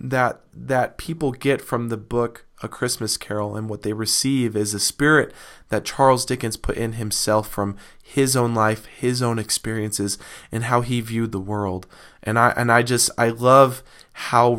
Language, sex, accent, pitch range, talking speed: English, male, American, 105-130 Hz, 180 wpm